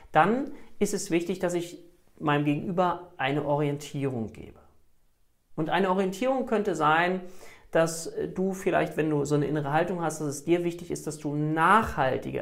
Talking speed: 165 wpm